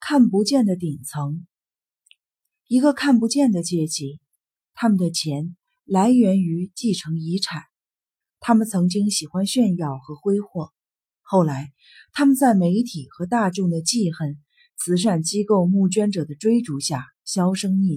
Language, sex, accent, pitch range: Chinese, female, native, 160-225 Hz